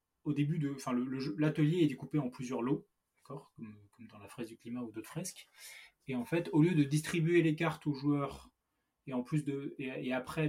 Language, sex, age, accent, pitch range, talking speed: French, male, 20-39, French, 120-155 Hz, 235 wpm